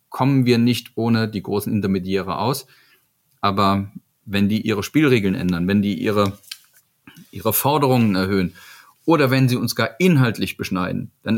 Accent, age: German, 40-59